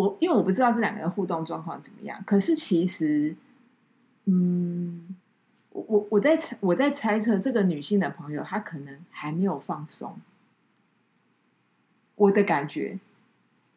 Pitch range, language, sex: 185-245 Hz, Chinese, female